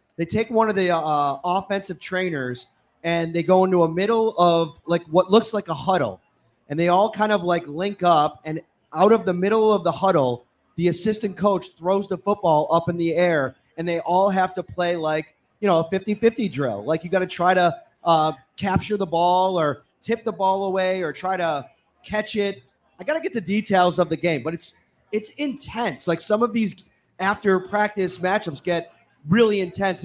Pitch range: 170-210 Hz